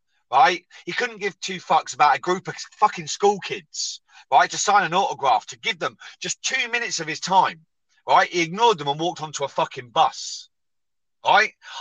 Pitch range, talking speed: 155-200 Hz, 195 wpm